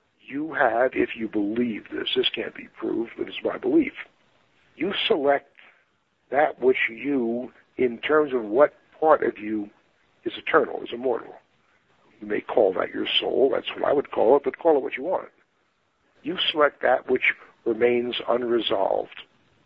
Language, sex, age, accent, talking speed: English, male, 60-79, American, 165 wpm